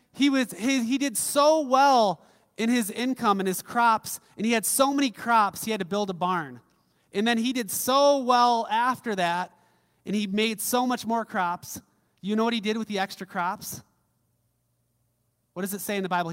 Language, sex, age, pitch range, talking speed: English, male, 30-49, 150-220 Hz, 205 wpm